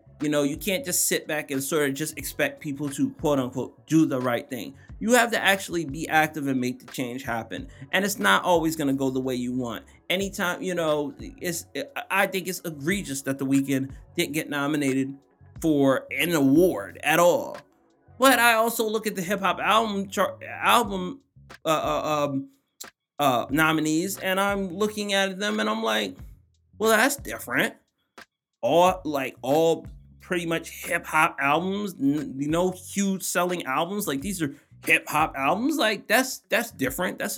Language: English